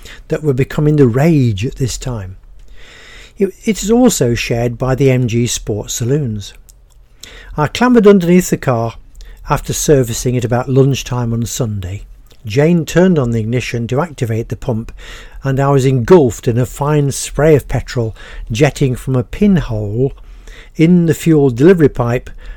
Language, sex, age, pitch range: English, male, 60-79, 120-155 Hz